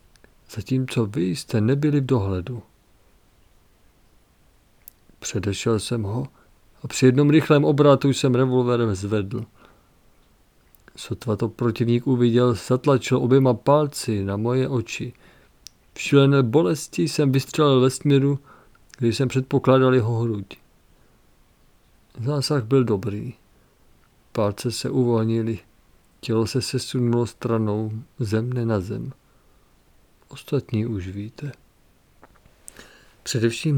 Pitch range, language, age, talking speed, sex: 105-135 Hz, Czech, 50-69, 100 wpm, male